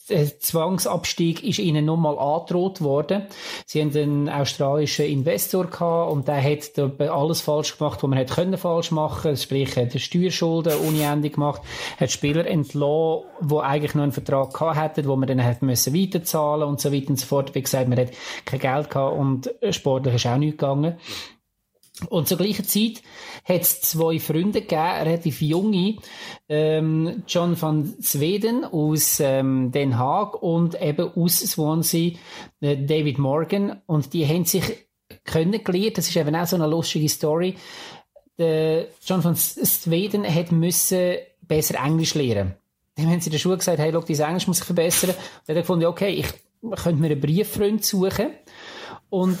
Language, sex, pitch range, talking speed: German, male, 150-180 Hz, 170 wpm